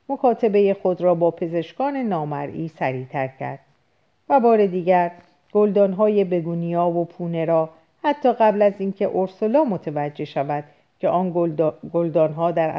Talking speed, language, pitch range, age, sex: 130 wpm, Persian, 160-215 Hz, 50-69, female